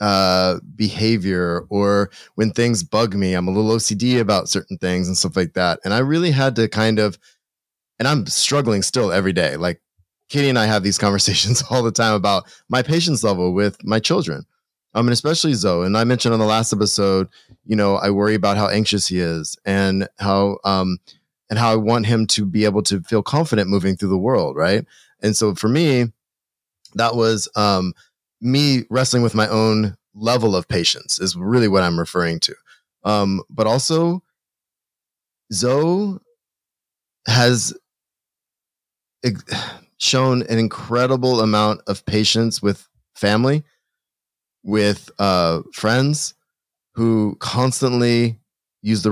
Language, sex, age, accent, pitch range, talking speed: English, male, 20-39, American, 100-120 Hz, 155 wpm